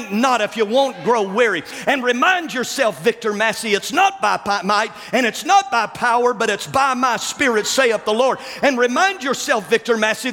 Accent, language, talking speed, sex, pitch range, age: American, English, 190 wpm, male, 235-310 Hz, 50-69